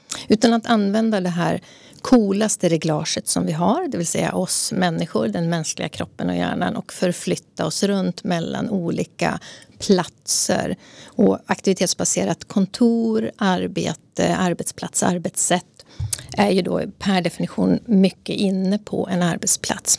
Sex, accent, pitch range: female, native, 175-210 Hz